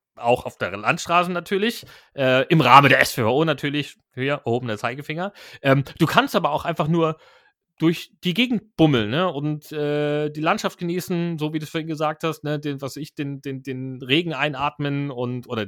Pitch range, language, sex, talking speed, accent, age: 135-165 Hz, German, male, 200 wpm, German, 30-49